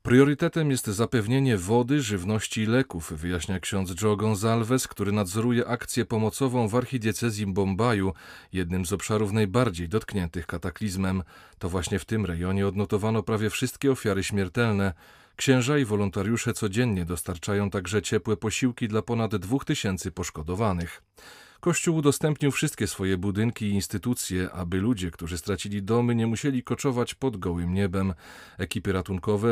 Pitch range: 95-115 Hz